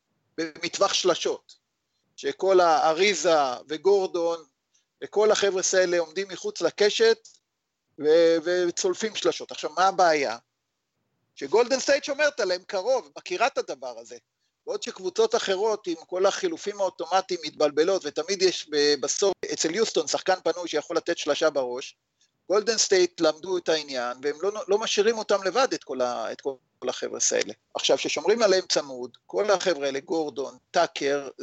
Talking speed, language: 130 wpm, Hebrew